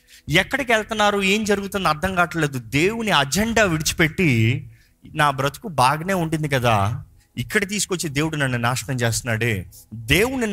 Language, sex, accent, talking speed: Telugu, male, native, 120 wpm